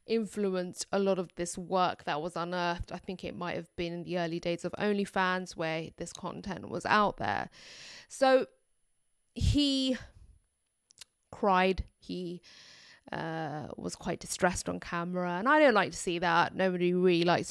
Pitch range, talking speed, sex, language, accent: 175-210 Hz, 160 wpm, female, English, British